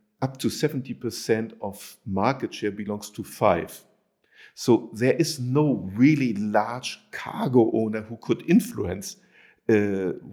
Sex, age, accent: male, 50-69, German